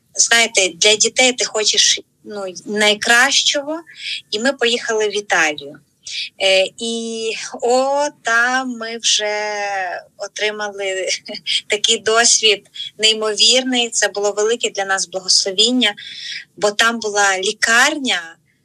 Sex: female